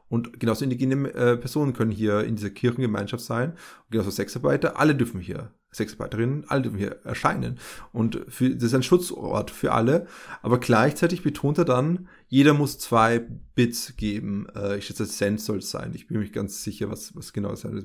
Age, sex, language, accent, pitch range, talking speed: 30-49, male, German, German, 115-140 Hz, 205 wpm